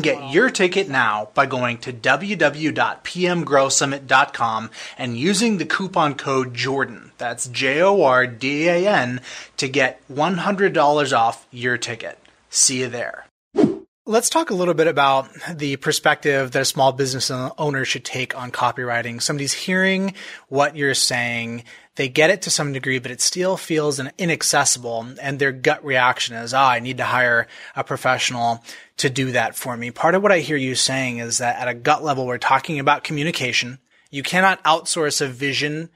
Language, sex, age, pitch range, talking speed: English, male, 30-49, 130-165 Hz, 165 wpm